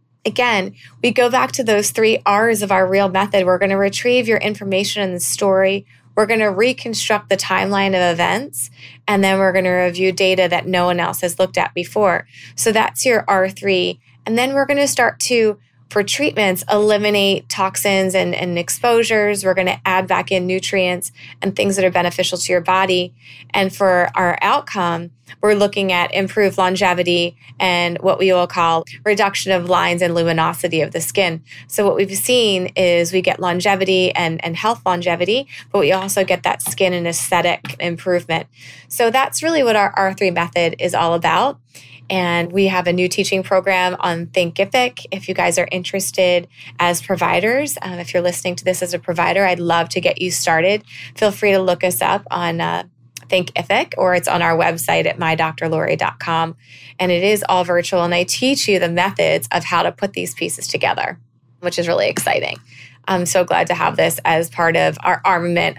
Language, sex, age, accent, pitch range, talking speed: English, female, 20-39, American, 170-195 Hz, 190 wpm